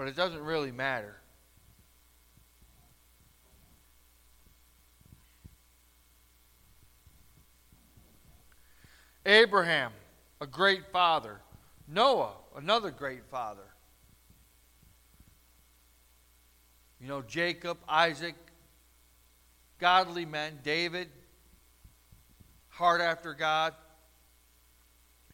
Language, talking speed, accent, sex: English, 55 wpm, American, male